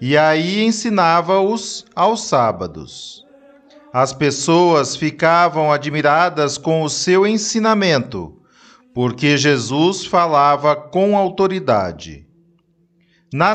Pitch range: 155-215 Hz